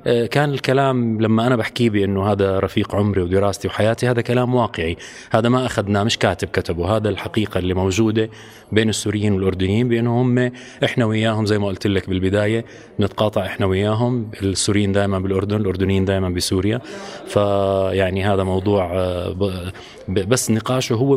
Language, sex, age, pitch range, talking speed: Arabic, male, 30-49, 95-125 Hz, 145 wpm